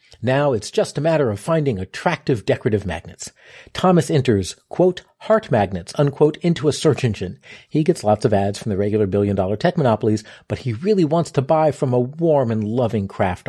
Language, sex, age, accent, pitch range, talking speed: English, male, 40-59, American, 105-155 Hz, 190 wpm